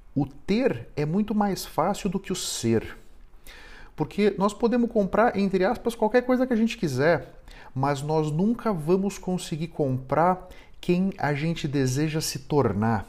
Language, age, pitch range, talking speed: Portuguese, 50-69, 135-195 Hz, 155 wpm